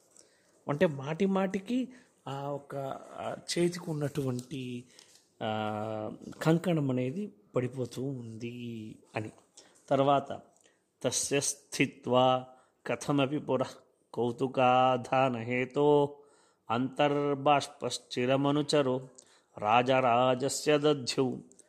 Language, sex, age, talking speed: Telugu, male, 30-49, 40 wpm